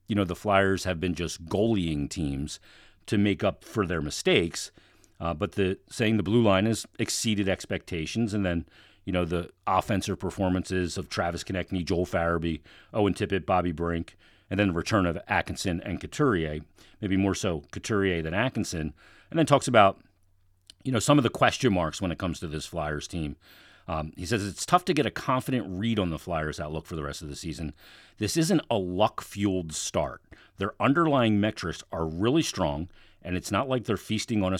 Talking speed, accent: 195 wpm, American